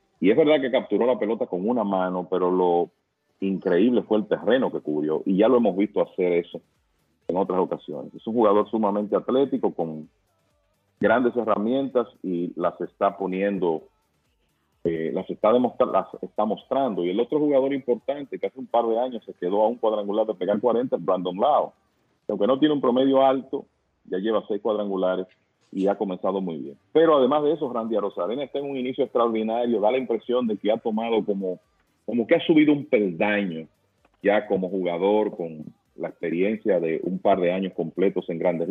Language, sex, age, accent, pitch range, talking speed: English, male, 40-59, Venezuelan, 90-115 Hz, 190 wpm